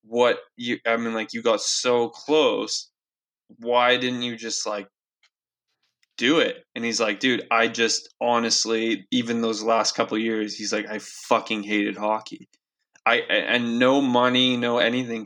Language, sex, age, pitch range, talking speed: English, male, 20-39, 110-120 Hz, 160 wpm